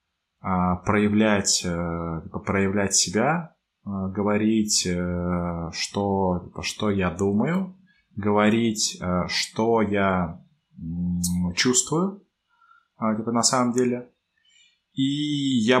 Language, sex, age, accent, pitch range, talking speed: Russian, male, 20-39, native, 90-115 Hz, 65 wpm